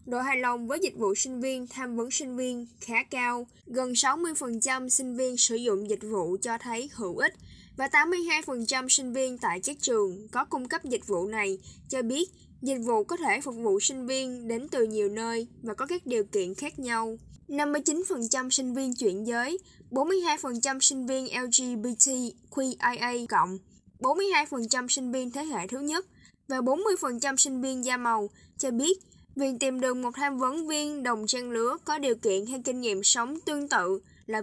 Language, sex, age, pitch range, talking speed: Vietnamese, female, 10-29, 230-280 Hz, 200 wpm